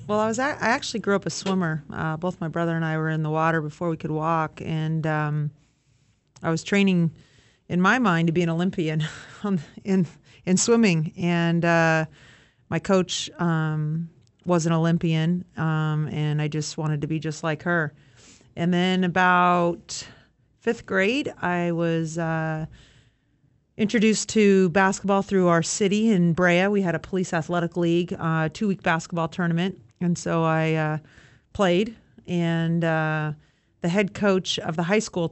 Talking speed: 165 wpm